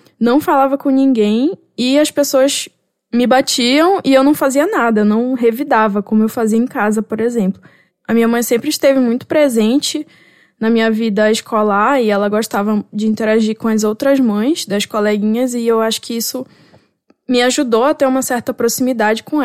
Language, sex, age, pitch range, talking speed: Portuguese, female, 10-29, 215-260 Hz, 180 wpm